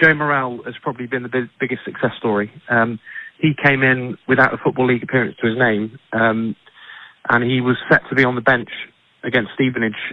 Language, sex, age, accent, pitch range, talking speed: English, male, 30-49, British, 115-130 Hz, 200 wpm